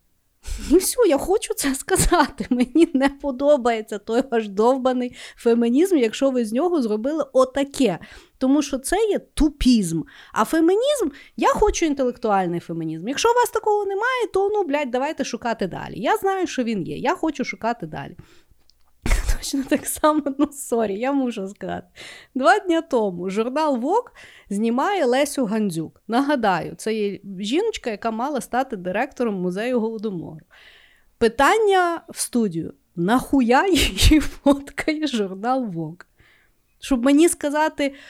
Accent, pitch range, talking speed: native, 230-320 Hz, 135 wpm